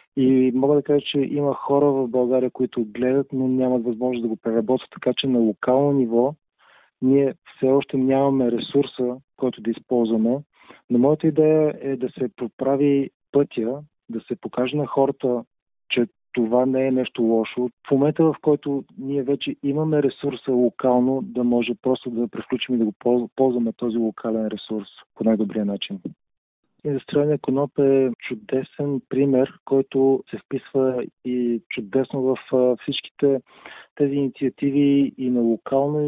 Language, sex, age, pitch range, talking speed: Bulgarian, male, 40-59, 120-140 Hz, 150 wpm